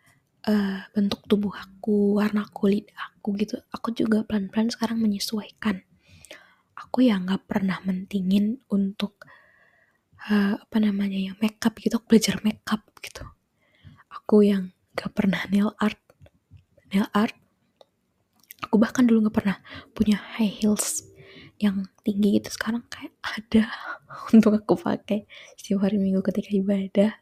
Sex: female